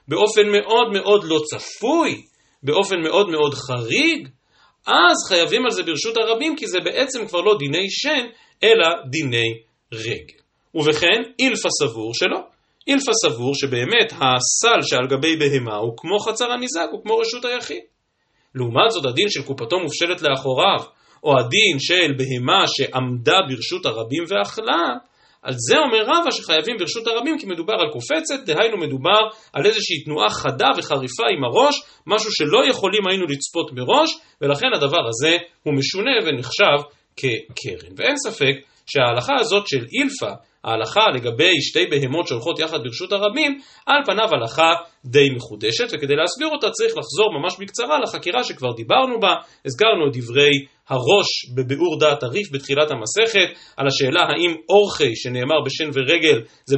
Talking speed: 145 wpm